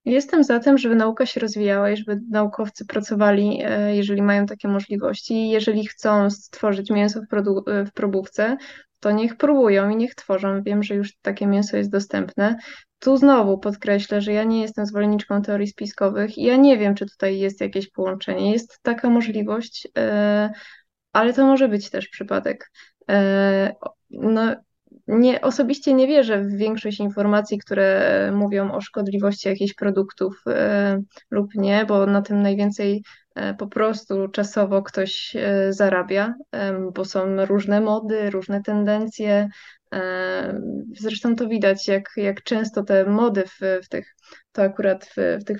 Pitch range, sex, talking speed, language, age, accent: 200-225 Hz, female, 140 wpm, Polish, 20-39, native